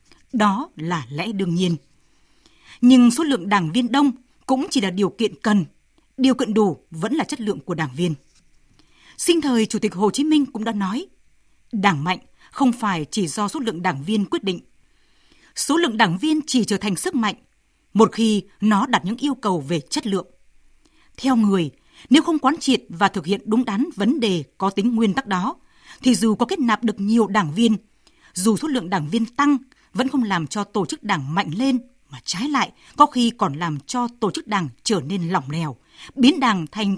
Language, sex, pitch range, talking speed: Vietnamese, female, 185-255 Hz, 210 wpm